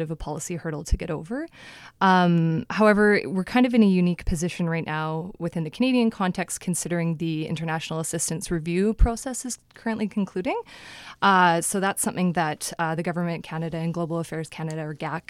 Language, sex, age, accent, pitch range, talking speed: English, female, 20-39, American, 160-185 Hz, 180 wpm